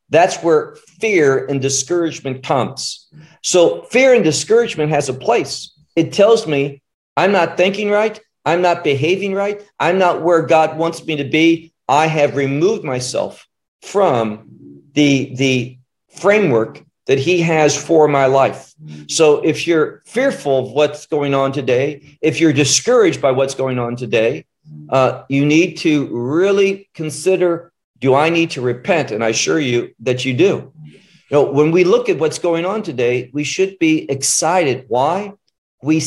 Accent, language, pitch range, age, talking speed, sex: American, English, 135-180 Hz, 50-69, 160 wpm, male